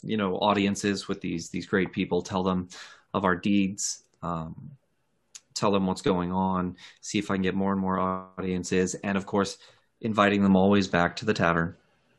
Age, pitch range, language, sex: 30-49, 90-105 Hz, English, male